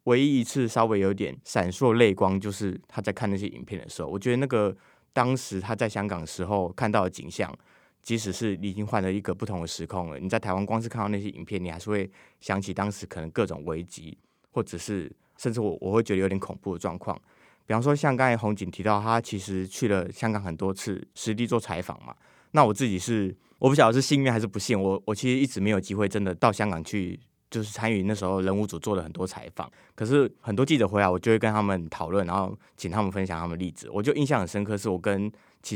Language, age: Chinese, 20-39